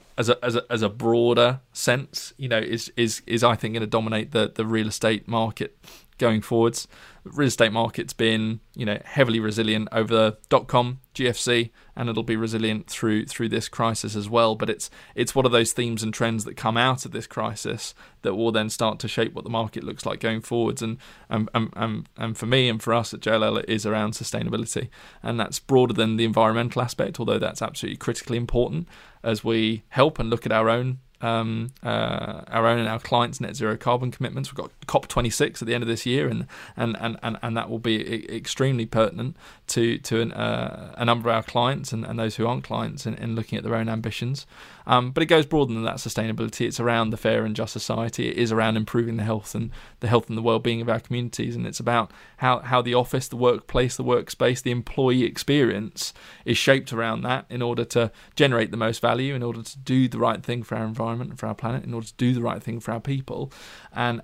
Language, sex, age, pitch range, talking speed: English, male, 20-39, 110-125 Hz, 225 wpm